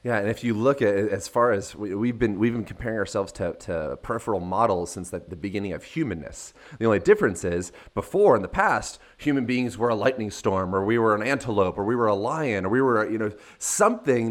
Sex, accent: male, American